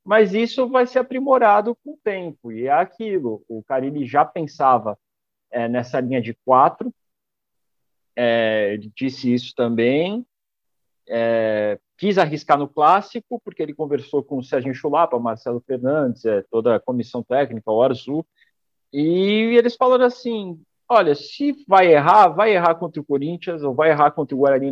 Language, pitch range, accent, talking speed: Portuguese, 130-185 Hz, Brazilian, 160 wpm